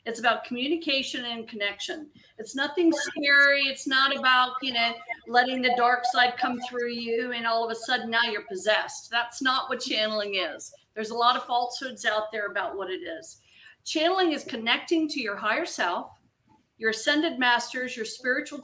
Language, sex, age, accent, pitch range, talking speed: English, female, 50-69, American, 225-275 Hz, 180 wpm